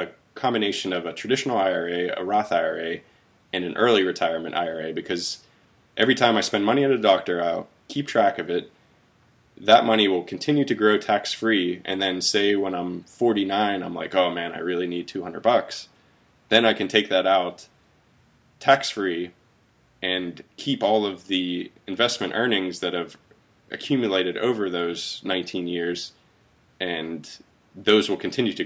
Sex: male